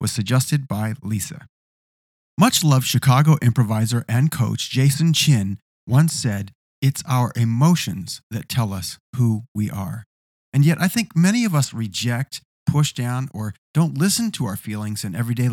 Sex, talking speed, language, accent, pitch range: male, 155 wpm, English, American, 110-145 Hz